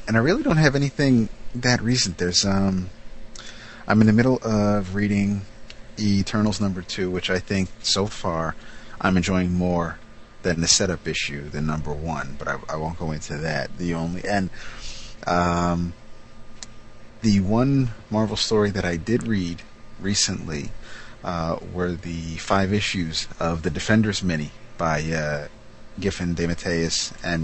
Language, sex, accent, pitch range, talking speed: English, male, American, 85-110 Hz, 150 wpm